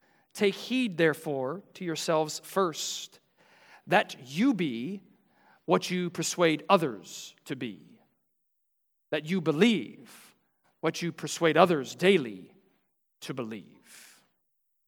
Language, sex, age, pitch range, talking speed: English, male, 40-59, 120-170 Hz, 100 wpm